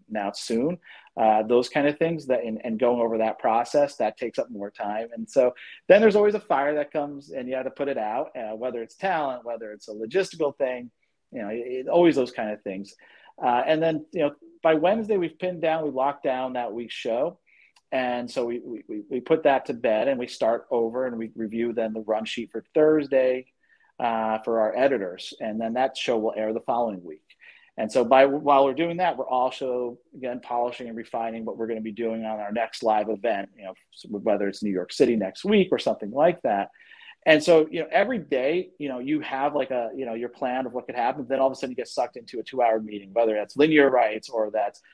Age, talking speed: 40-59, 240 wpm